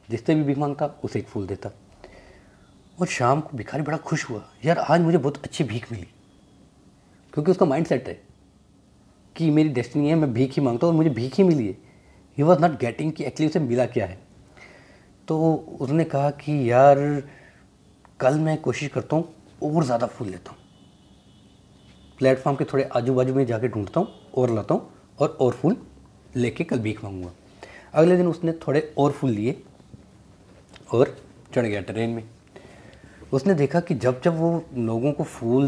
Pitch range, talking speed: 110-155 Hz, 175 wpm